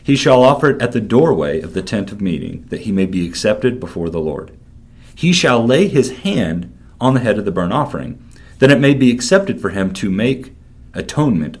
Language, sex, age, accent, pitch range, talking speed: English, male, 40-59, American, 90-120 Hz, 215 wpm